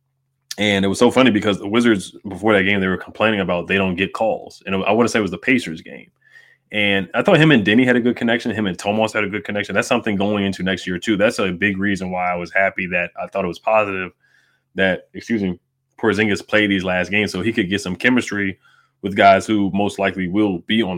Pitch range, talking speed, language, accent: 95-110 Hz, 255 wpm, English, American